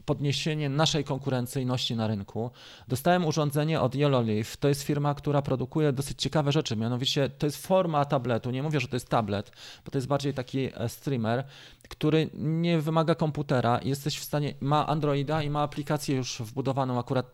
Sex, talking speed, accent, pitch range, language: male, 170 wpm, native, 120-150 Hz, Polish